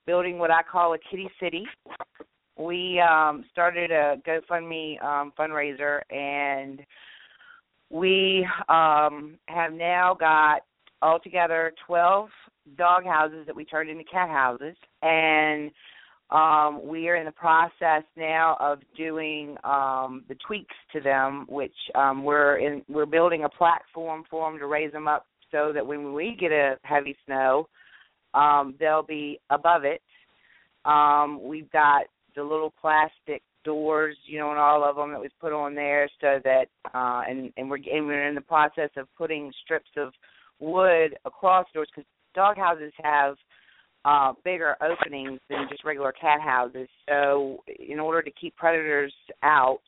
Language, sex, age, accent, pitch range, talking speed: English, female, 40-59, American, 145-165 Hz, 155 wpm